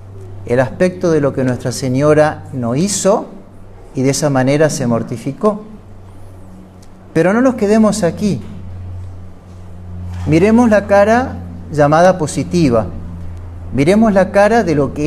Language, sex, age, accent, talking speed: Spanish, male, 50-69, Argentinian, 125 wpm